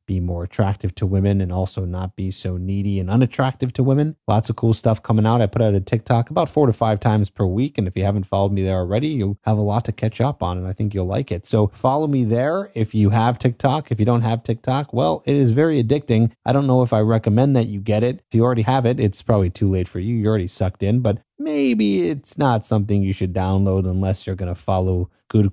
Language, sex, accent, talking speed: English, male, American, 265 wpm